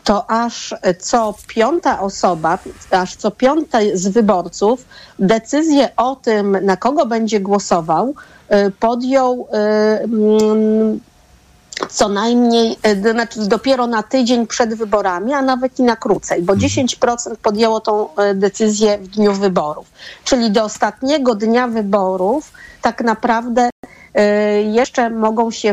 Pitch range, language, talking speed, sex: 200-240 Hz, Polish, 115 wpm, female